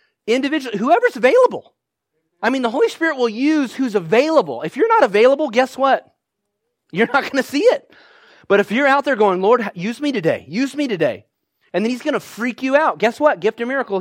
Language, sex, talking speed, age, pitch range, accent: English, male, 215 wpm, 30-49, 190-280 Hz, American